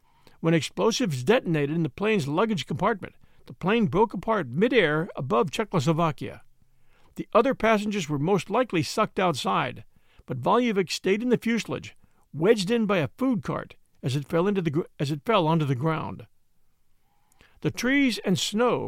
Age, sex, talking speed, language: 50-69, male, 145 wpm, English